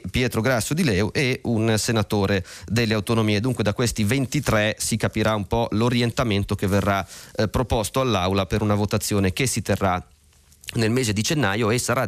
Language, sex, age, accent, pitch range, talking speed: Italian, male, 30-49, native, 95-120 Hz, 175 wpm